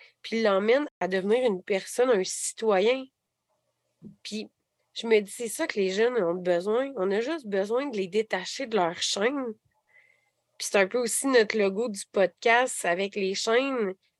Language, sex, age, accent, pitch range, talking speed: French, female, 30-49, Canadian, 195-255 Hz, 180 wpm